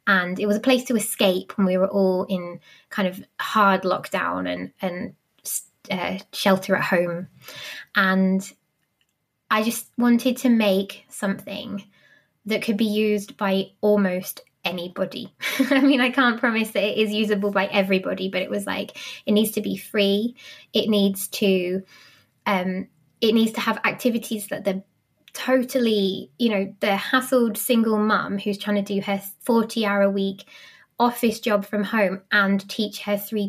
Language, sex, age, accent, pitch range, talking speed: English, female, 20-39, British, 195-230 Hz, 165 wpm